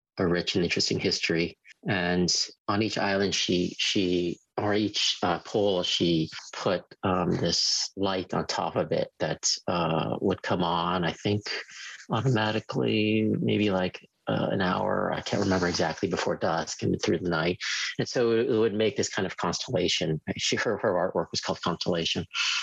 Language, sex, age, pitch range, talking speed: English, male, 40-59, 90-105 Hz, 165 wpm